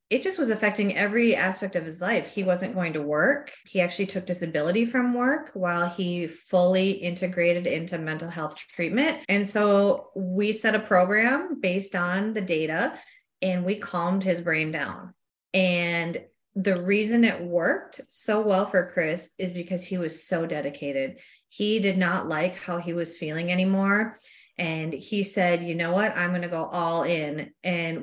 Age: 30-49